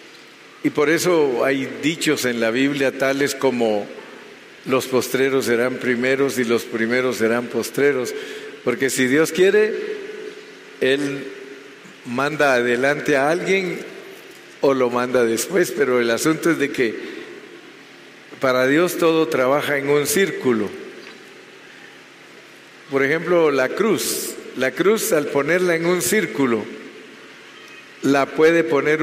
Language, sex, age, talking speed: Spanish, male, 50-69, 120 wpm